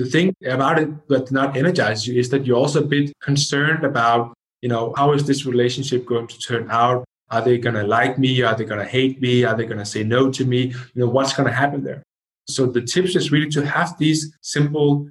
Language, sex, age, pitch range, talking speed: English, male, 20-39, 120-145 Hz, 230 wpm